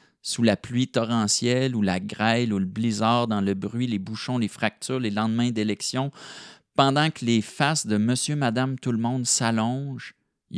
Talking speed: 180 wpm